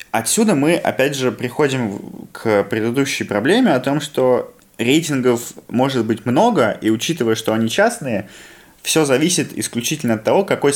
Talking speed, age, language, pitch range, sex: 145 wpm, 20-39, Russian, 105-130 Hz, male